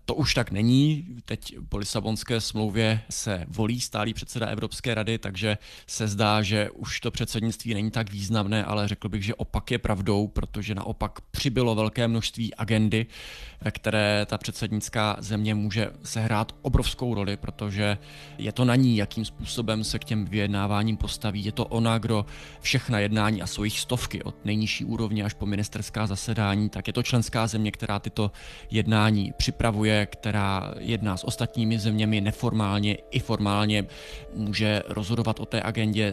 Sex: male